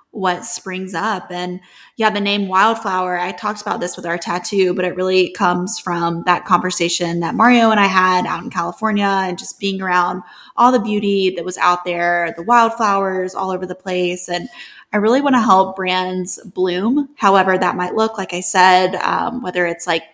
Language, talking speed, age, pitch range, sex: English, 195 wpm, 20-39, 180-215 Hz, female